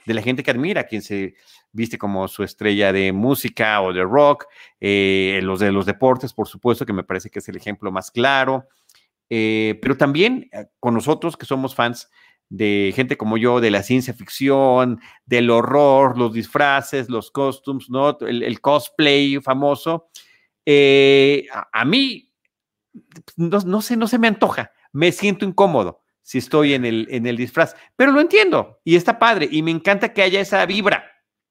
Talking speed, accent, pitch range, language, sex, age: 175 wpm, Mexican, 115-145 Hz, Spanish, male, 40-59